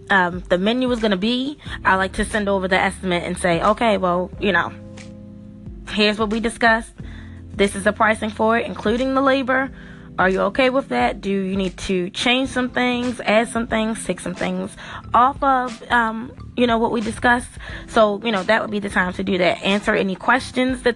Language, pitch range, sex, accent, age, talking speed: English, 185-230 Hz, female, American, 20-39, 210 wpm